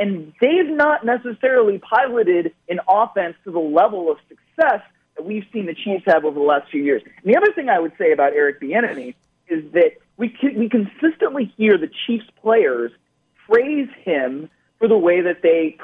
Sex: male